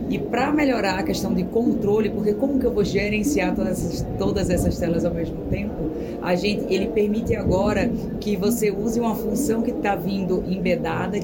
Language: Portuguese